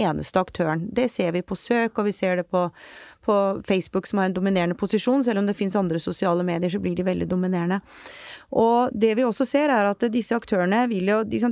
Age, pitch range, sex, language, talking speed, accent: 30-49, 180-230 Hz, female, English, 225 wpm, Swedish